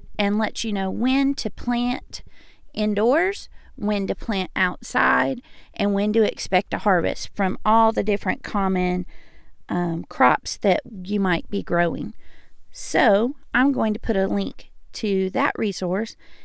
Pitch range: 195-245 Hz